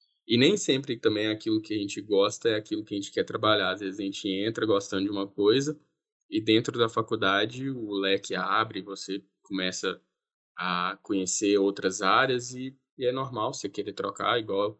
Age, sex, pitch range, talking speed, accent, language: 10-29, male, 100-115 Hz, 185 wpm, Brazilian, Portuguese